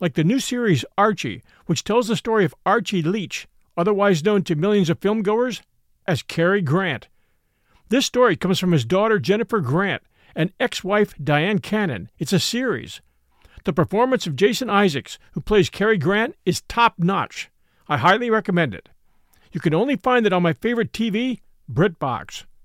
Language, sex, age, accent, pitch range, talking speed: English, male, 50-69, American, 165-220 Hz, 160 wpm